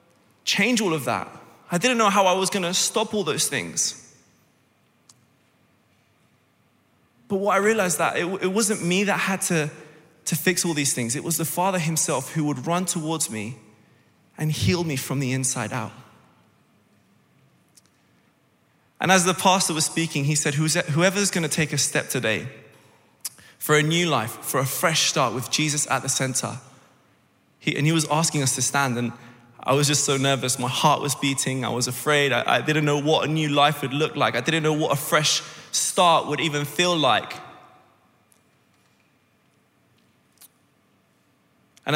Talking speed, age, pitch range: 175 wpm, 20-39, 130-175 Hz